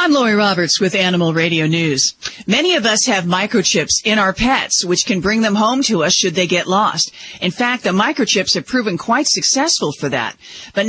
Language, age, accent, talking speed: English, 50-69, American, 205 wpm